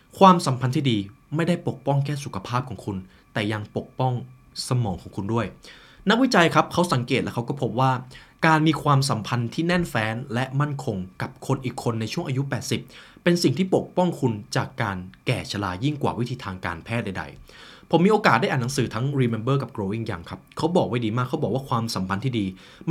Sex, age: male, 20-39